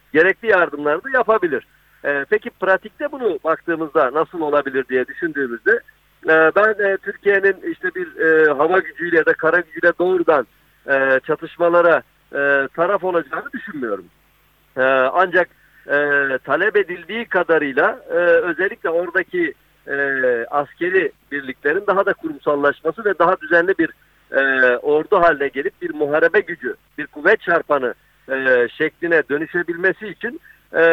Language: Turkish